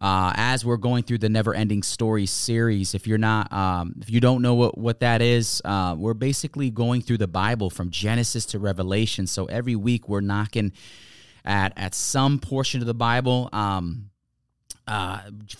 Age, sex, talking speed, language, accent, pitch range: 30-49, male, 180 wpm, English, American, 100-125 Hz